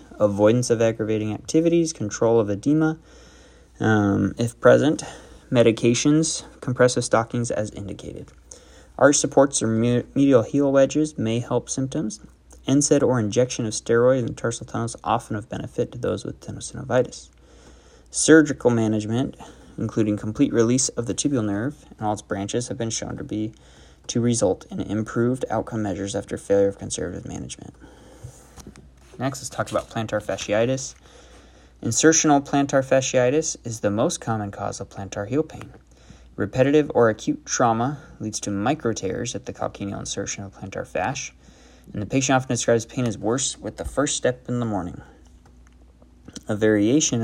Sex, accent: male, American